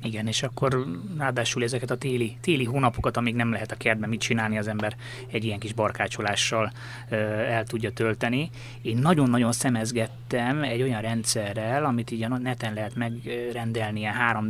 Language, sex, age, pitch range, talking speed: Hungarian, male, 30-49, 110-125 Hz, 160 wpm